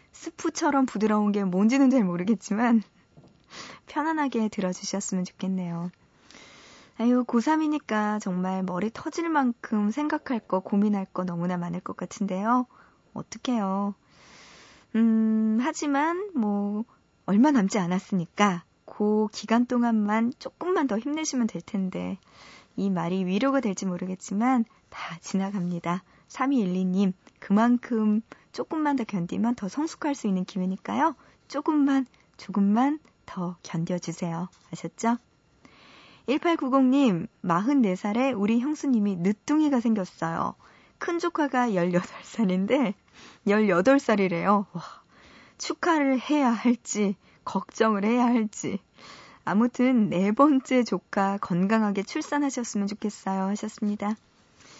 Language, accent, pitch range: Korean, native, 190-260 Hz